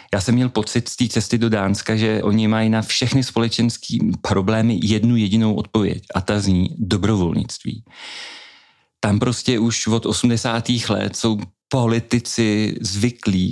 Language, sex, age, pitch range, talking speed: Czech, male, 40-59, 100-120 Hz, 140 wpm